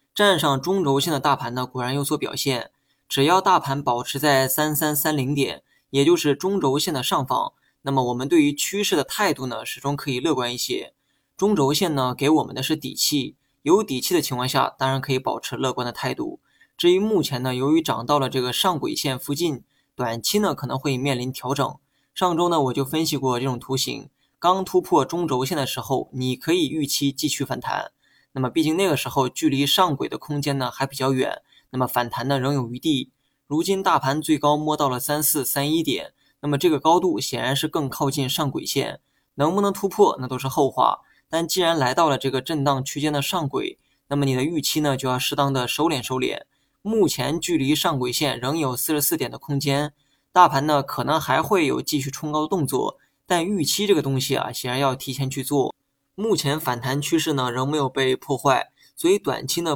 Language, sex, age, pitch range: Chinese, male, 20-39, 130-155 Hz